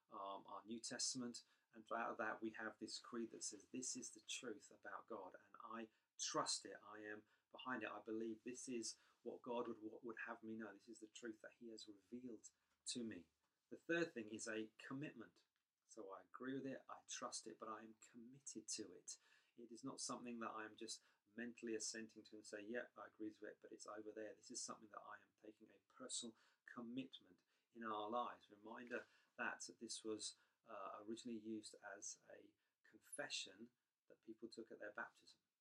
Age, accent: 40-59, British